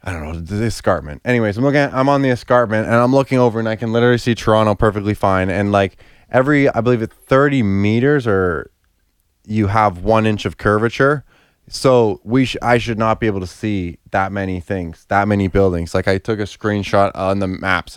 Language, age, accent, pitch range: English, 20-39, American, 100-125 Hz